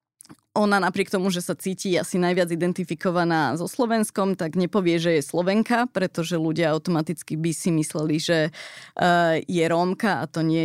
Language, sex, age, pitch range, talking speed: Slovak, female, 20-39, 165-200 Hz, 160 wpm